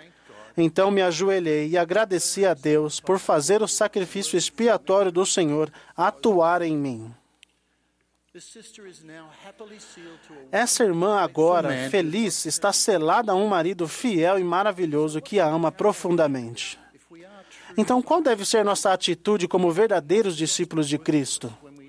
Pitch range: 160-205 Hz